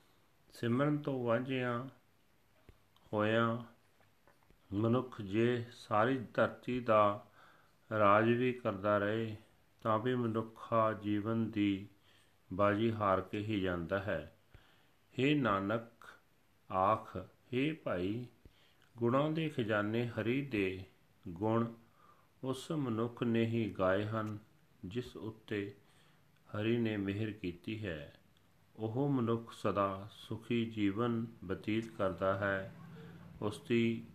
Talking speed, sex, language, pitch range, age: 100 wpm, male, Punjabi, 100-120 Hz, 40-59